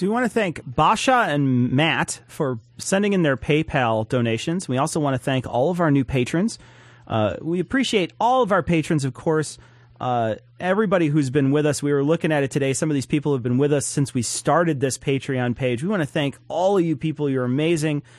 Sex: male